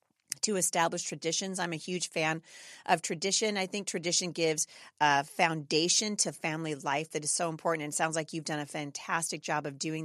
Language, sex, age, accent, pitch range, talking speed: English, female, 40-59, American, 155-205 Hz, 195 wpm